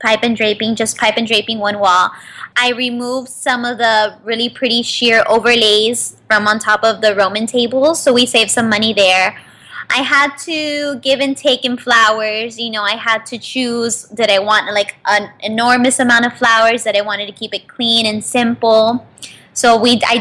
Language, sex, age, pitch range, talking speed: English, female, 20-39, 215-250 Hz, 195 wpm